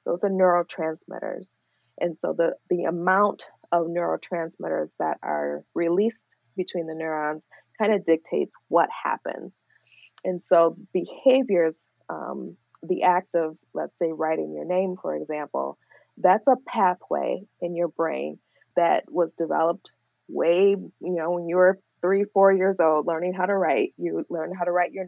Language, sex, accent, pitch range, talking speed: English, female, American, 165-190 Hz, 155 wpm